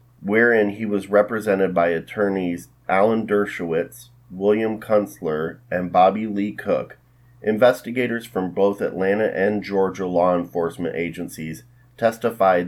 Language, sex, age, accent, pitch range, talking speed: English, male, 30-49, American, 90-120 Hz, 115 wpm